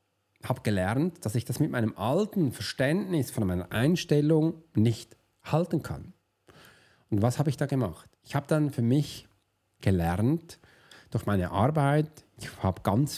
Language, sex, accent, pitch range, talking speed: German, male, German, 110-160 Hz, 155 wpm